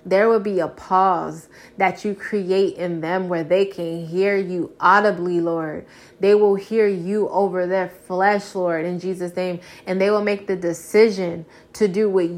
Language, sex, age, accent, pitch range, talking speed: English, female, 20-39, American, 175-200 Hz, 180 wpm